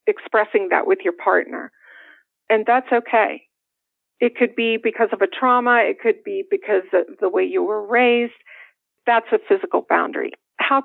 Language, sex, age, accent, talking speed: English, female, 50-69, American, 165 wpm